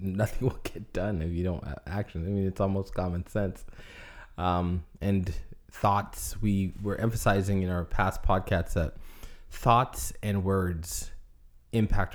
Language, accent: English, American